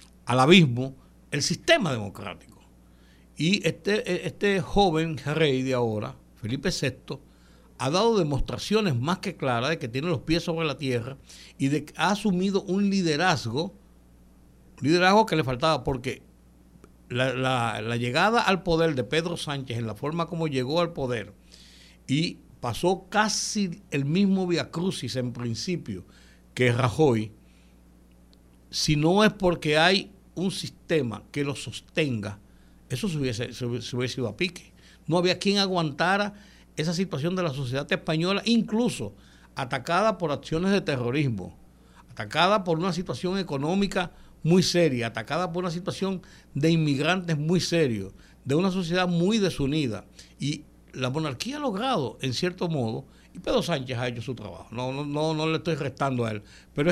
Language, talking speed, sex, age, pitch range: Spanish, 150 wpm, male, 60-79, 120-180 Hz